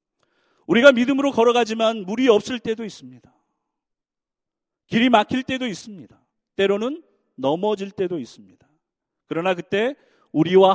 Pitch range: 145-225 Hz